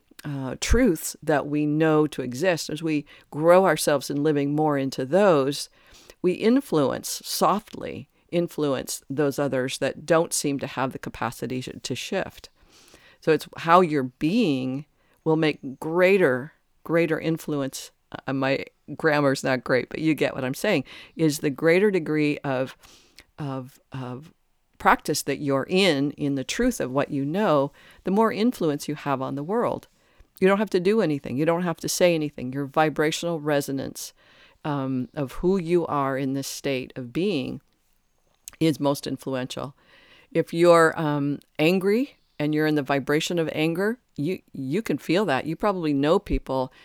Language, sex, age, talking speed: English, female, 50-69, 160 wpm